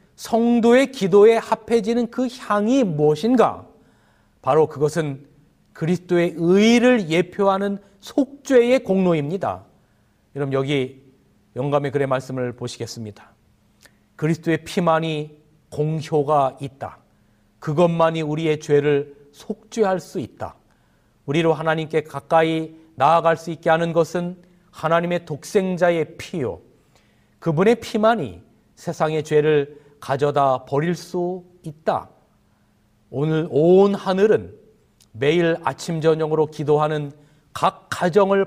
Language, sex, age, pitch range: Korean, male, 40-59, 145-195 Hz